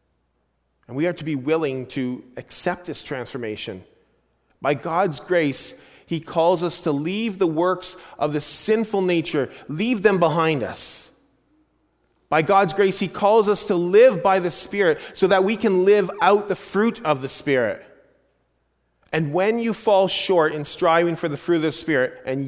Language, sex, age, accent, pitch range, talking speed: English, male, 30-49, American, 130-190 Hz, 170 wpm